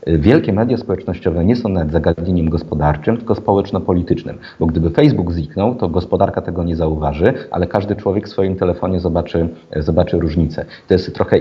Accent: native